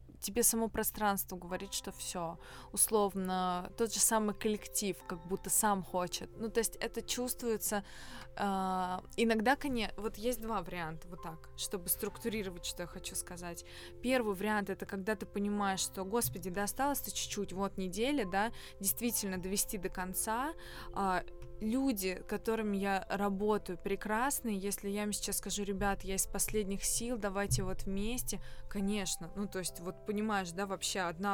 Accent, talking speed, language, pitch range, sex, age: native, 155 wpm, Russian, 185-220 Hz, female, 20-39